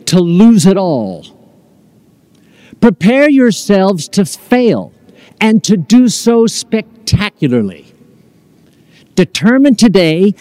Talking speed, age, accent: 85 wpm, 50-69, American